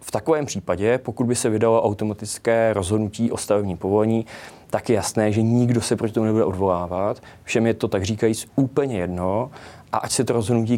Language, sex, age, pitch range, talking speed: Czech, male, 20-39, 105-120 Hz, 190 wpm